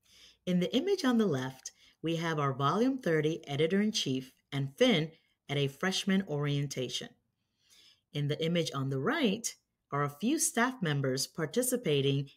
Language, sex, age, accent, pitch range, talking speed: English, female, 30-49, American, 135-180 Hz, 145 wpm